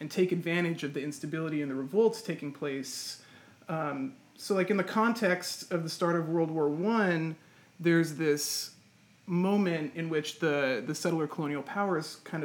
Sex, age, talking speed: male, 30-49, 170 wpm